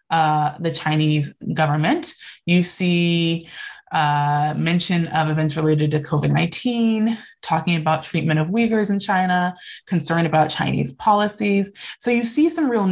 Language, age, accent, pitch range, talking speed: English, 20-39, American, 160-235 Hz, 135 wpm